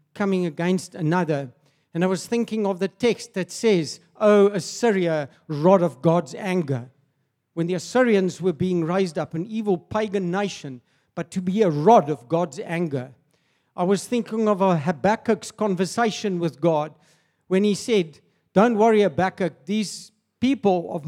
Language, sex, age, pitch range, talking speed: English, male, 60-79, 160-210 Hz, 155 wpm